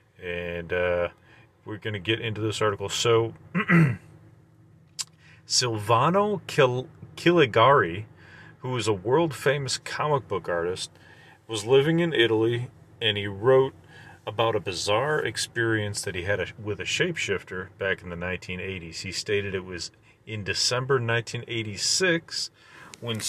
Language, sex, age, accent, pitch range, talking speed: English, male, 40-59, American, 105-140 Hz, 125 wpm